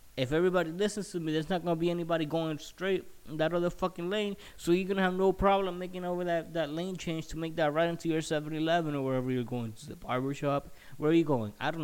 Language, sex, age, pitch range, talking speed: English, male, 20-39, 120-155 Hz, 265 wpm